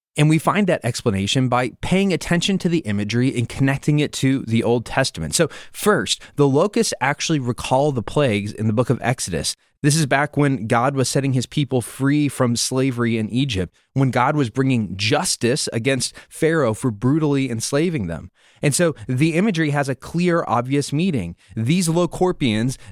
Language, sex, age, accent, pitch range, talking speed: English, male, 20-39, American, 115-150 Hz, 175 wpm